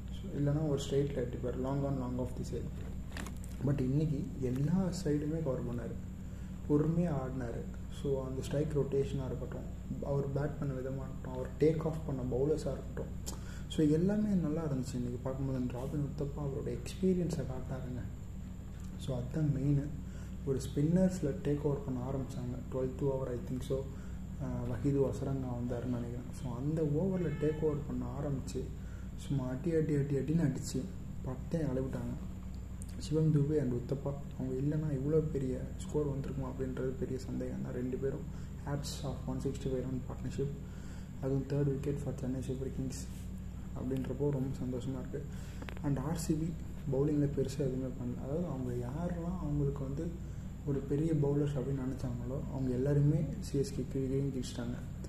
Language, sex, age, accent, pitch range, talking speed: Tamil, male, 30-49, native, 125-145 Hz, 145 wpm